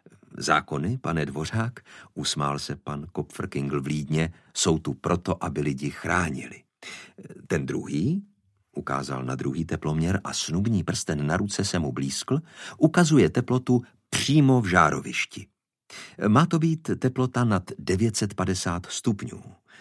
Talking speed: 125 wpm